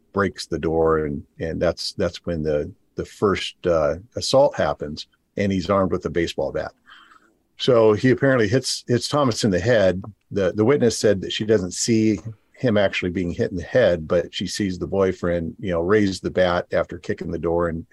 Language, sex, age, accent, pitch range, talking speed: English, male, 50-69, American, 85-110 Hz, 200 wpm